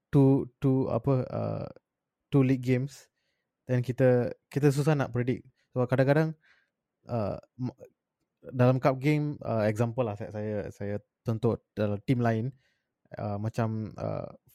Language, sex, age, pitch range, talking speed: Malay, male, 20-39, 110-135 Hz, 130 wpm